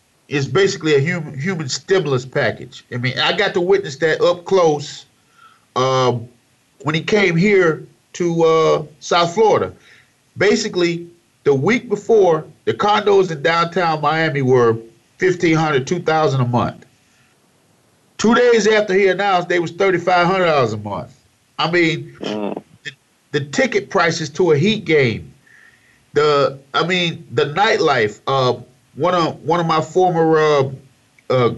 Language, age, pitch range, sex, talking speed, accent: English, 50-69, 130-185 Hz, male, 140 wpm, American